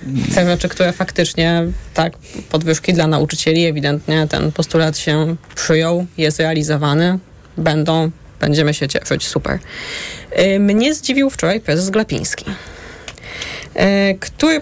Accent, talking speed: native, 105 wpm